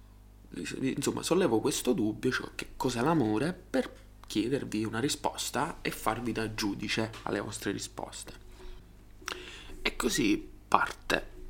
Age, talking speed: 20-39, 115 wpm